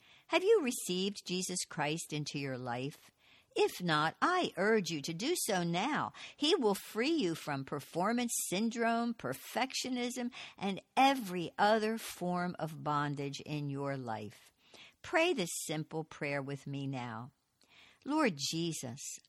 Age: 60-79